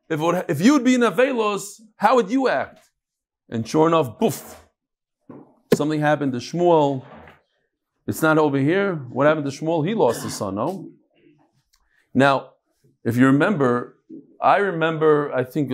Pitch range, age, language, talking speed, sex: 125-165 Hz, 40-59, English, 155 wpm, male